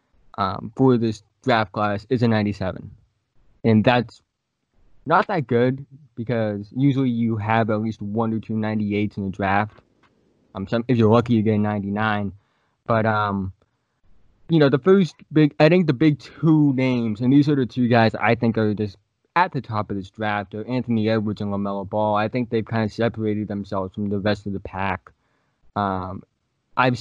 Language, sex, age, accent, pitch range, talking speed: English, male, 20-39, American, 105-125 Hz, 190 wpm